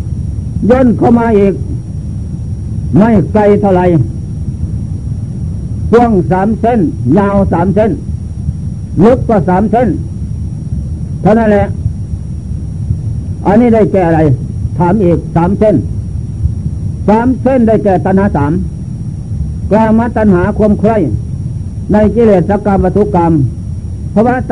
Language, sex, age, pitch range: Thai, male, 60-79, 125-215 Hz